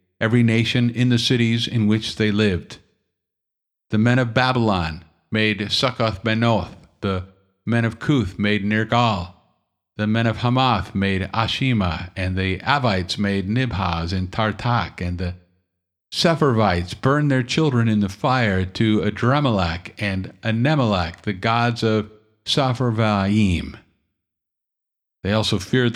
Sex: male